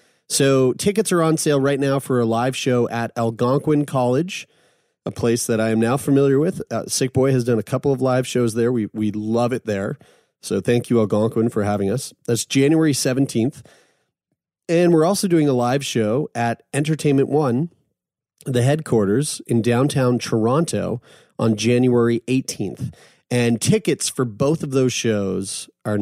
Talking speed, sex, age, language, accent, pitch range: 170 wpm, male, 30-49, English, American, 115-140 Hz